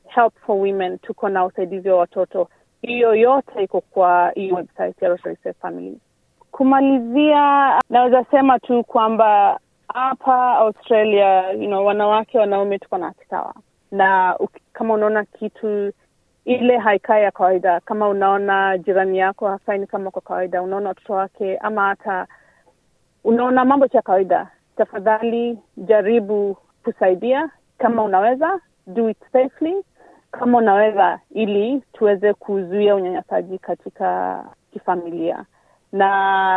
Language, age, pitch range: Swahili, 30-49, 190-235 Hz